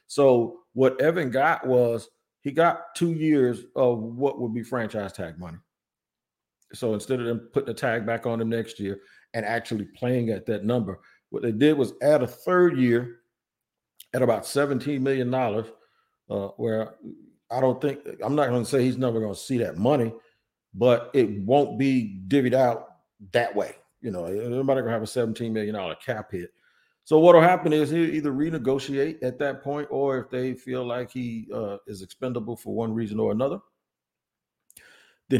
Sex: male